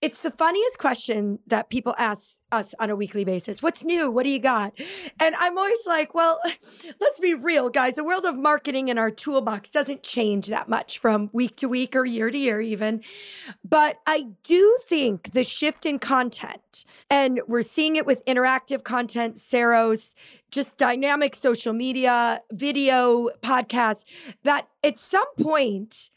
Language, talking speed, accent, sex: English, 165 wpm, American, female